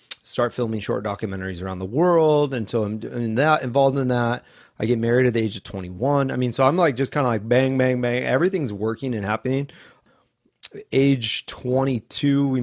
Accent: American